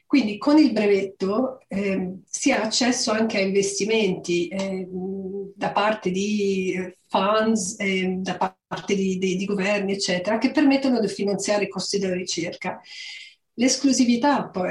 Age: 40-59